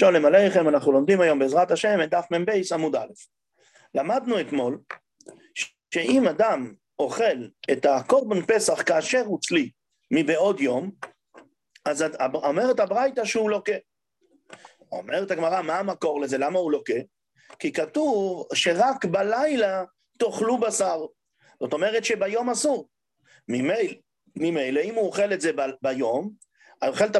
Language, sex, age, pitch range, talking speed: English, male, 40-59, 180-265 Hz, 130 wpm